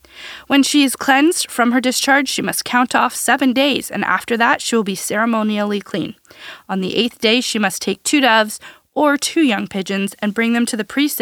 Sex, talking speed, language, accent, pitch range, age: female, 215 wpm, English, American, 200-255 Hz, 20-39